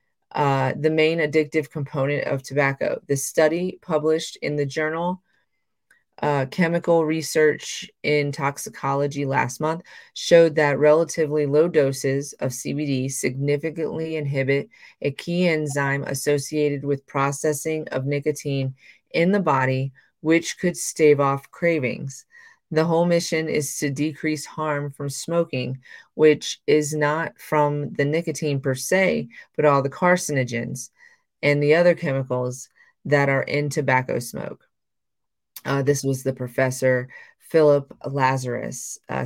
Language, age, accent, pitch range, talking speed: English, 30-49, American, 135-160 Hz, 125 wpm